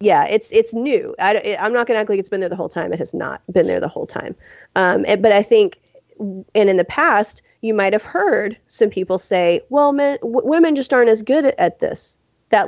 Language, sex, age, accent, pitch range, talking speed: English, female, 30-49, American, 180-245 Hz, 245 wpm